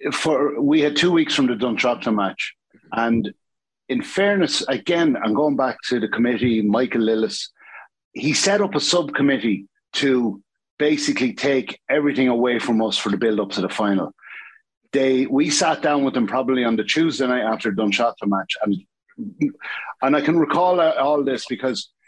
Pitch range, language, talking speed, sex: 120-160 Hz, English, 165 wpm, male